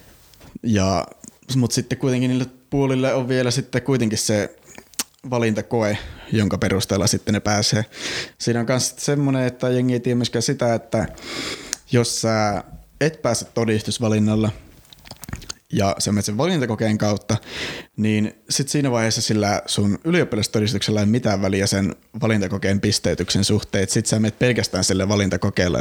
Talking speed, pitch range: 135 wpm, 105-125 Hz